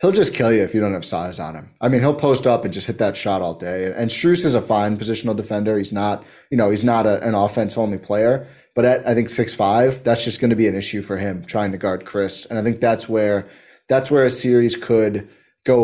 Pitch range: 105-120 Hz